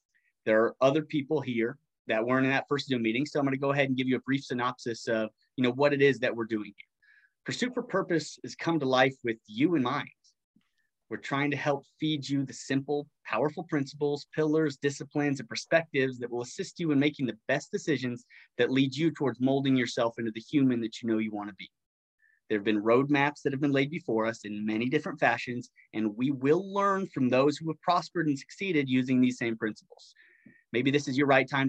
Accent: American